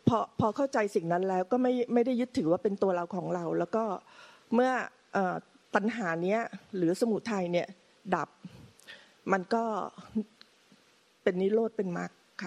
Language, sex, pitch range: Thai, female, 190-240 Hz